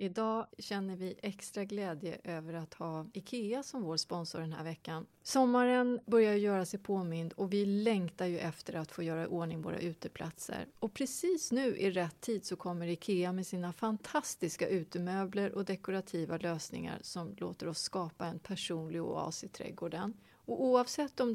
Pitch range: 170-225 Hz